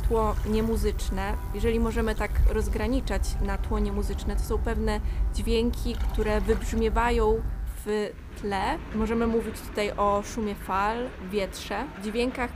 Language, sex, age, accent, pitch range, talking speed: Polish, female, 20-39, native, 210-230 Hz, 120 wpm